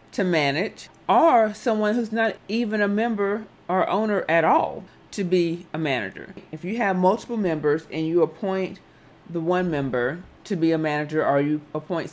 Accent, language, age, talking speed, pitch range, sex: American, English, 40-59, 175 wpm, 145-180 Hz, female